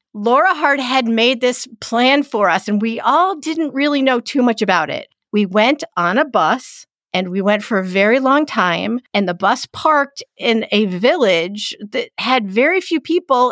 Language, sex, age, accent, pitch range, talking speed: English, female, 50-69, American, 205-280 Hz, 190 wpm